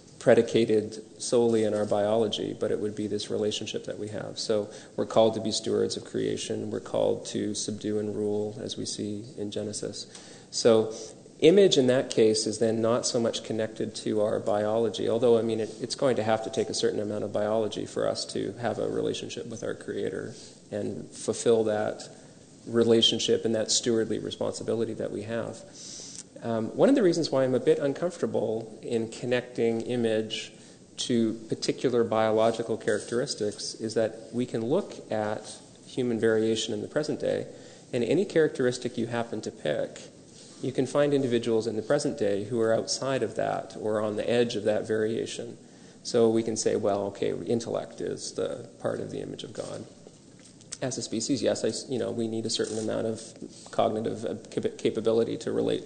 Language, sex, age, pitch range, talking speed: English, male, 30-49, 110-115 Hz, 180 wpm